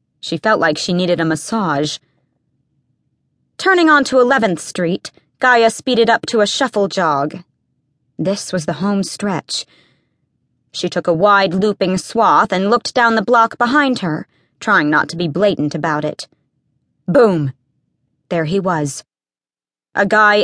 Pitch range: 150-225 Hz